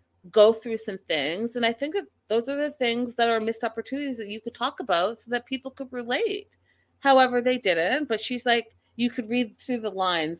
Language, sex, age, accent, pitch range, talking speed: English, female, 30-49, American, 160-230 Hz, 220 wpm